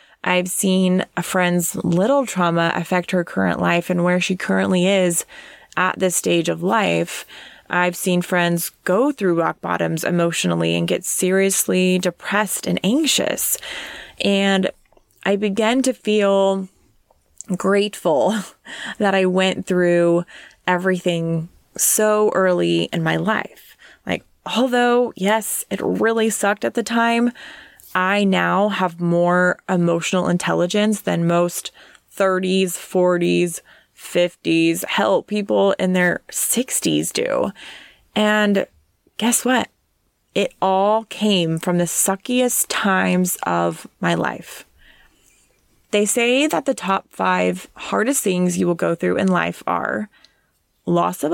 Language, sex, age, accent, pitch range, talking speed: English, female, 20-39, American, 175-210 Hz, 125 wpm